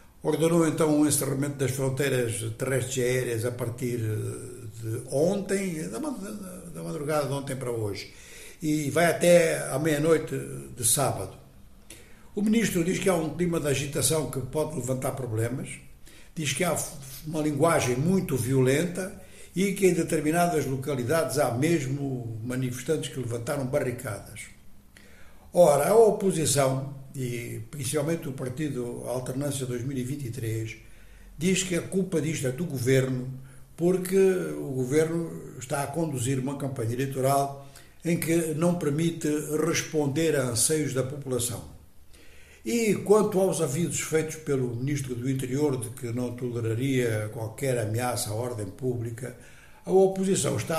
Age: 60-79